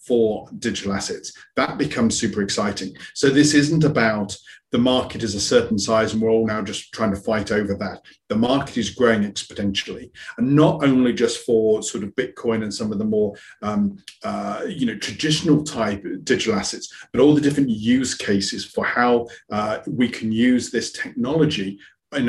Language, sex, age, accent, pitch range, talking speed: English, male, 40-59, British, 105-145 Hz, 185 wpm